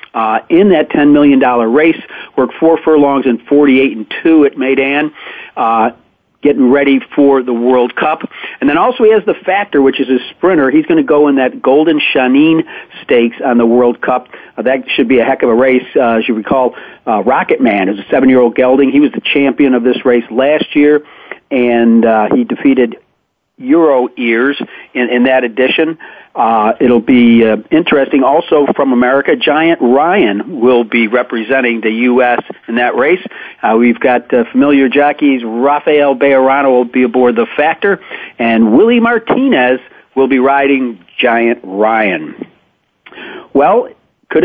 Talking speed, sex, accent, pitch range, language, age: 175 wpm, male, American, 125-155 Hz, English, 50-69